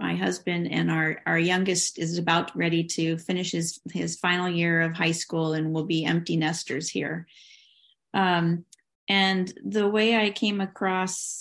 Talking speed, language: 165 wpm, English